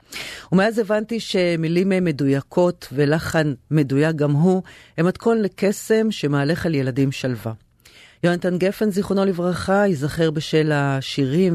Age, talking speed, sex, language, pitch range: 40-59, 115 wpm, female, Hebrew, 135-175 Hz